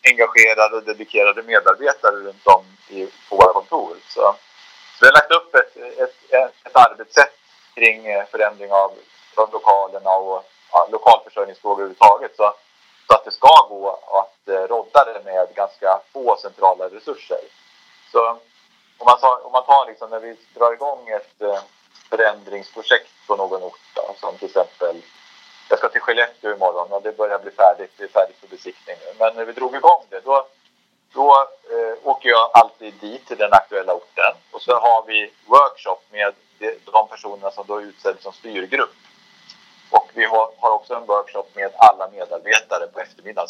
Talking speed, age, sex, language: 165 wpm, 30-49, male, Swedish